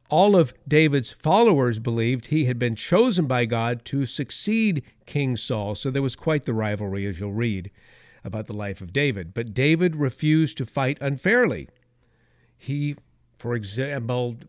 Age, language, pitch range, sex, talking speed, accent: 50-69, English, 115-145 Hz, male, 155 wpm, American